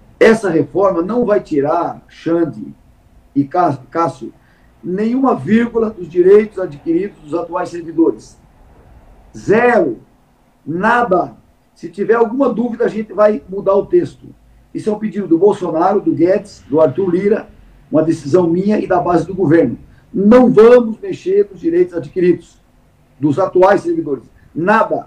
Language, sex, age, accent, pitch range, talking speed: Portuguese, male, 50-69, Brazilian, 170-220 Hz, 135 wpm